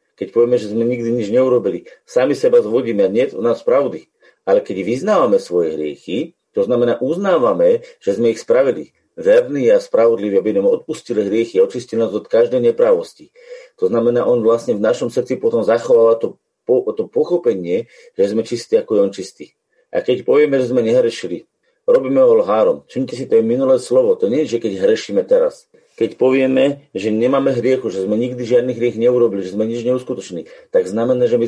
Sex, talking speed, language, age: male, 190 wpm, Slovak, 40-59